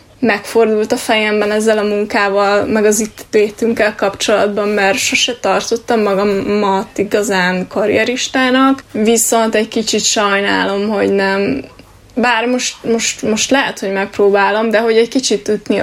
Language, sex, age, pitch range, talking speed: Hungarian, female, 10-29, 205-245 Hz, 135 wpm